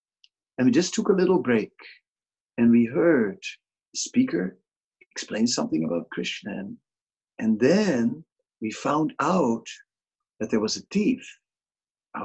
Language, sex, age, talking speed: English, male, 50-69, 130 wpm